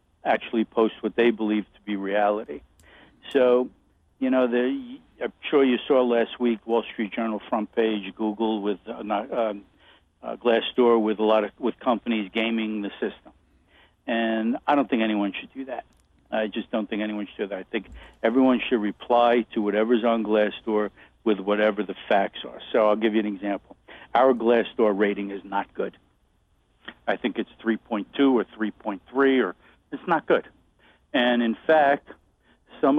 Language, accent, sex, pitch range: English, American, male, 105-130 Hz